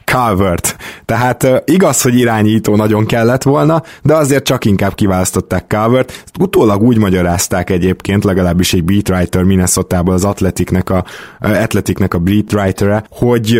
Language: Hungarian